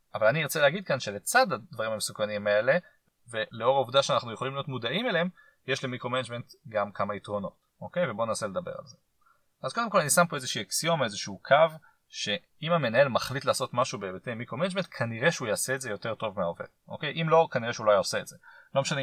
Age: 30-49